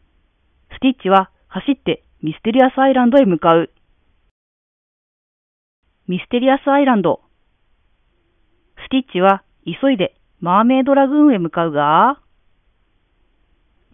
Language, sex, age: Japanese, female, 40-59